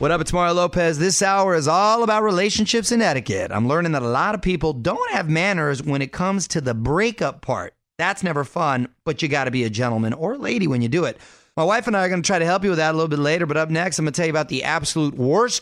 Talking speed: 290 wpm